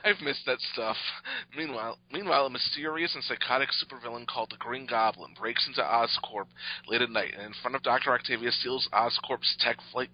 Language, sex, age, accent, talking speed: English, male, 40-59, American, 185 wpm